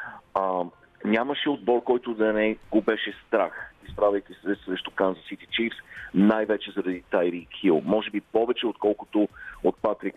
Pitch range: 95-120 Hz